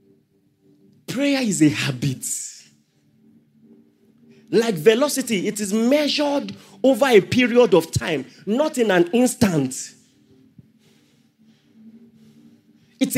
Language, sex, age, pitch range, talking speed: English, male, 40-59, 220-320 Hz, 85 wpm